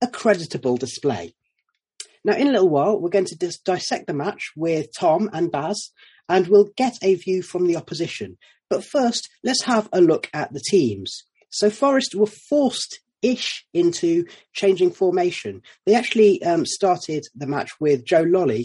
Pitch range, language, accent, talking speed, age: 125-190 Hz, English, British, 165 wpm, 30-49